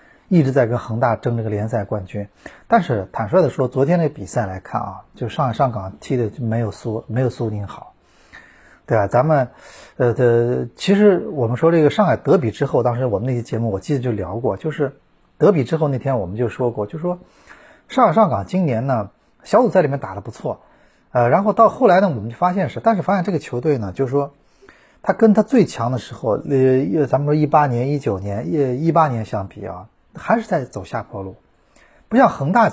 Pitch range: 115-180 Hz